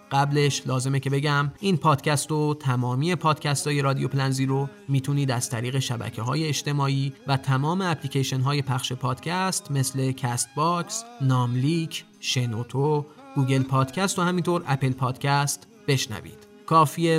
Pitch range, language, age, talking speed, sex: 125-150 Hz, Persian, 30-49, 125 wpm, male